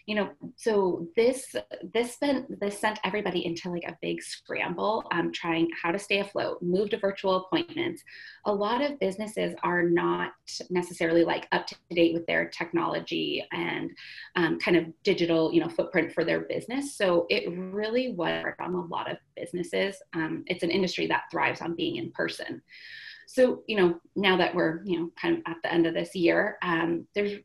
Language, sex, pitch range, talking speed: English, female, 170-215 Hz, 190 wpm